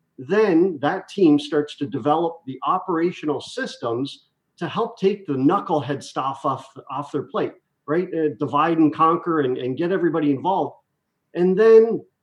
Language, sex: English, male